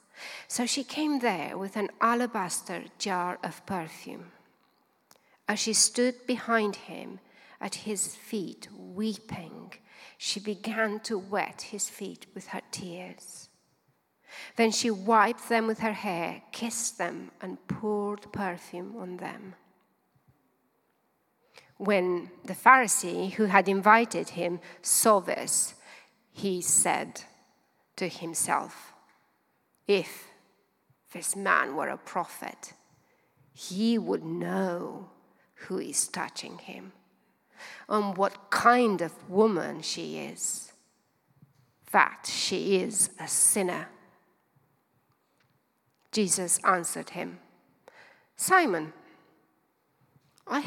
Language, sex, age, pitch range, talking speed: English, female, 40-59, 185-230 Hz, 100 wpm